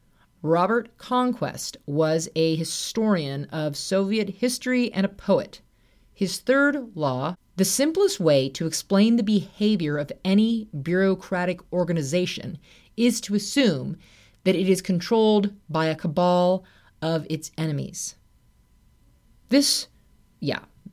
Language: English